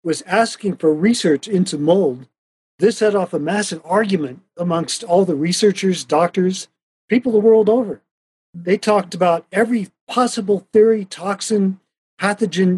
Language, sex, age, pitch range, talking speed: English, male, 50-69, 160-200 Hz, 135 wpm